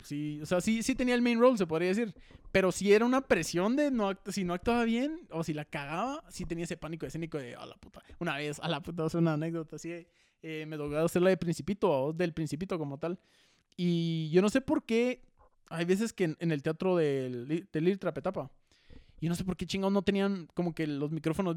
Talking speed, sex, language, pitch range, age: 245 wpm, male, Spanish, 160-200 Hz, 20-39